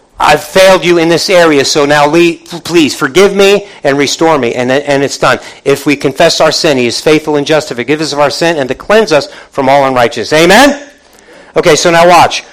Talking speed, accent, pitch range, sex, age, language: 215 wpm, American, 165-210 Hz, male, 50-69, English